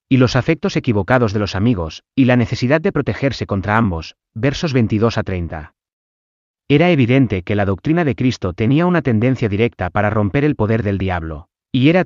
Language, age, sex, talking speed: Spanish, 30-49, male, 185 wpm